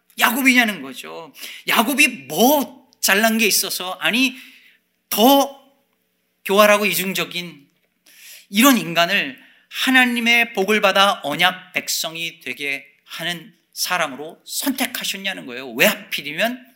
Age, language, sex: 40-59, Korean, male